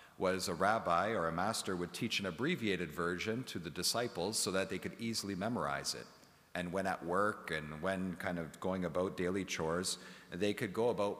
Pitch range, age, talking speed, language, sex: 85-105 Hz, 40-59, 200 wpm, English, male